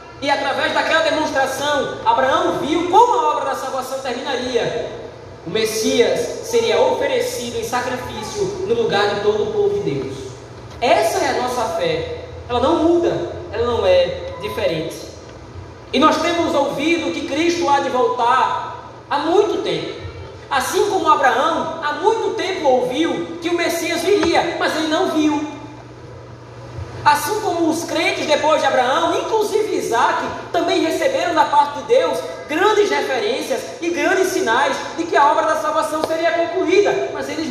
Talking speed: 150 wpm